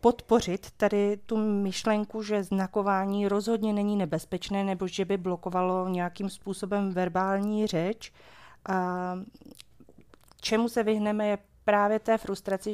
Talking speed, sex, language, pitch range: 120 wpm, female, Czech, 175-205 Hz